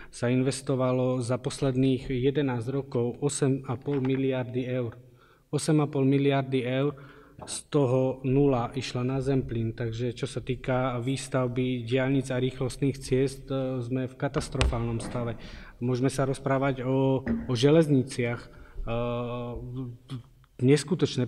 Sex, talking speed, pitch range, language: male, 105 wpm, 130-145 Hz, Slovak